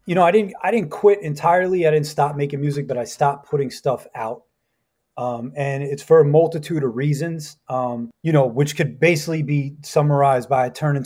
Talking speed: 200 wpm